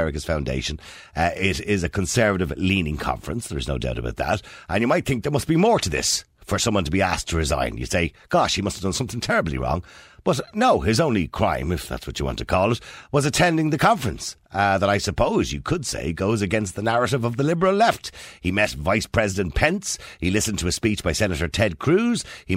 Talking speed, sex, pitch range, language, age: 230 wpm, male, 70-100 Hz, English, 50-69